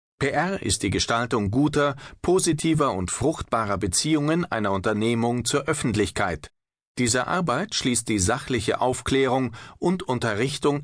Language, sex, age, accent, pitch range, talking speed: German, male, 40-59, German, 105-140 Hz, 115 wpm